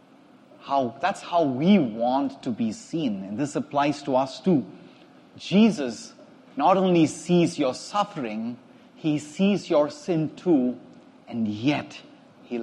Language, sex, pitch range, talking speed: English, male, 180-270 Hz, 135 wpm